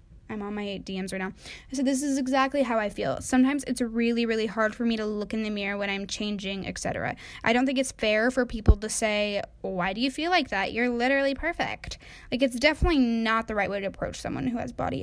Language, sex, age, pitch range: English, female, 10-29, 215-270 Hz